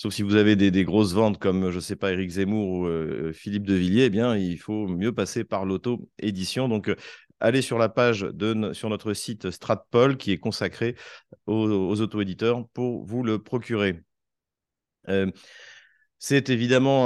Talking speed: 180 wpm